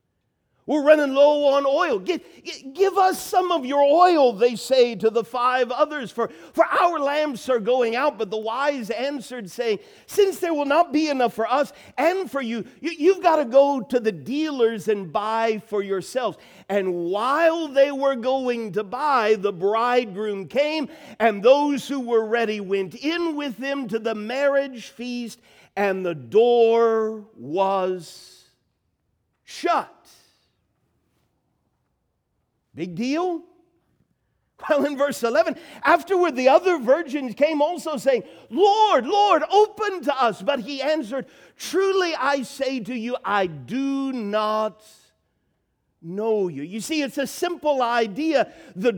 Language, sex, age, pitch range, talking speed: English, male, 50-69, 220-310 Hz, 145 wpm